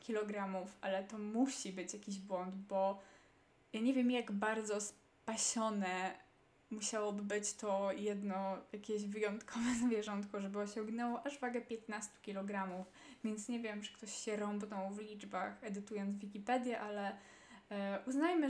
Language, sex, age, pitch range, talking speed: Polish, female, 20-39, 195-235 Hz, 130 wpm